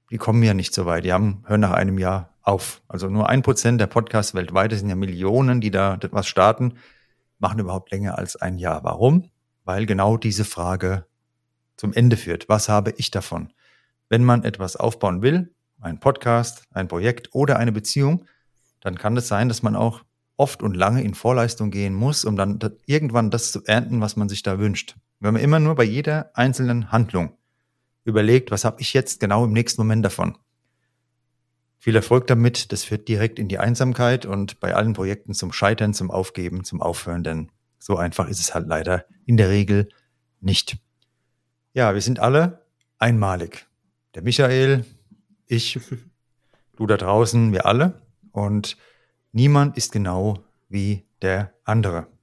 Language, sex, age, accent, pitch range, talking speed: German, male, 40-59, German, 95-120 Hz, 175 wpm